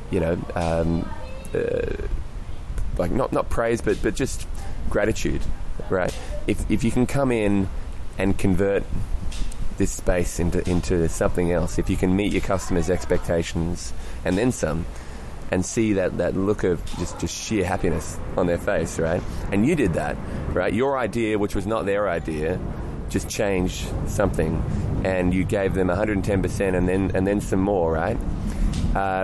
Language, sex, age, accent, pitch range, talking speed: English, male, 20-39, Australian, 85-100 Hz, 170 wpm